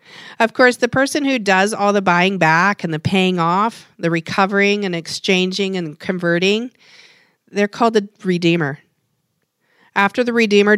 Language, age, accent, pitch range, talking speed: English, 40-59, American, 165-200 Hz, 150 wpm